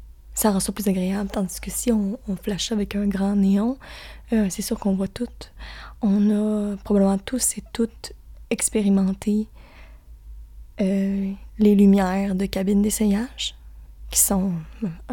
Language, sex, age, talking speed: French, female, 20-39, 145 wpm